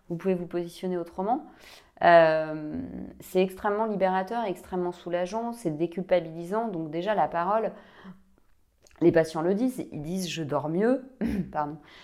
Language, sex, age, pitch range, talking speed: French, female, 30-49, 160-210 Hz, 135 wpm